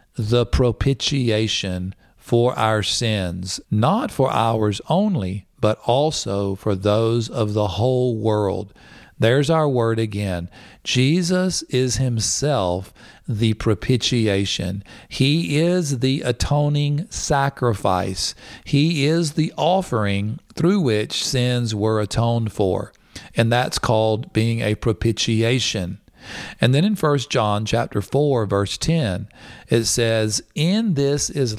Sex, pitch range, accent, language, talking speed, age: male, 105-135 Hz, American, English, 115 wpm, 50-69